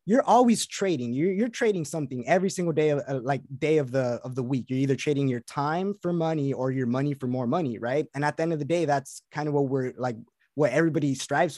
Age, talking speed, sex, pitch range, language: 20-39, 250 wpm, male, 135-170 Hz, English